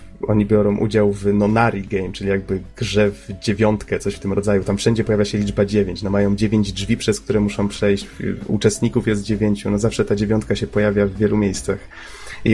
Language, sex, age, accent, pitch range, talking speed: Polish, male, 30-49, native, 100-115 Hz, 200 wpm